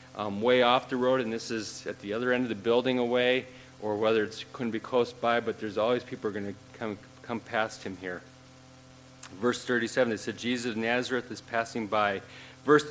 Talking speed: 220 wpm